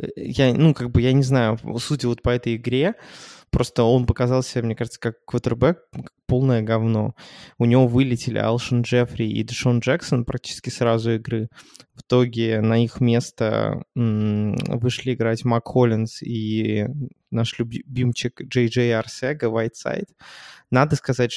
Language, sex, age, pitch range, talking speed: Russian, male, 20-39, 115-130 Hz, 140 wpm